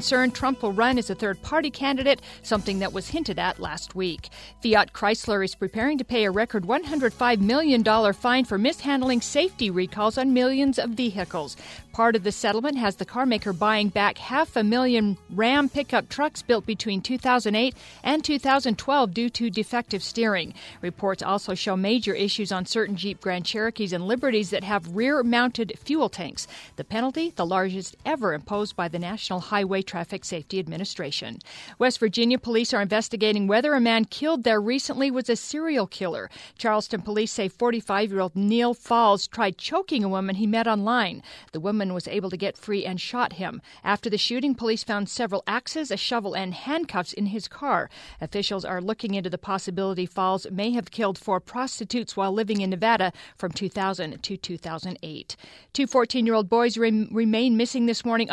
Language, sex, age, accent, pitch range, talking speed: English, female, 50-69, American, 195-245 Hz, 175 wpm